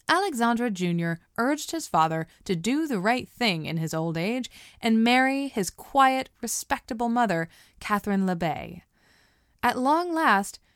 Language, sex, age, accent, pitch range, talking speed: English, female, 20-39, American, 170-255 Hz, 140 wpm